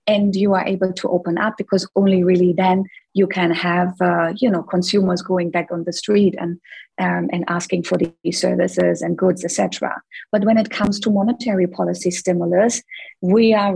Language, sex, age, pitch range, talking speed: English, female, 30-49, 175-200 Hz, 190 wpm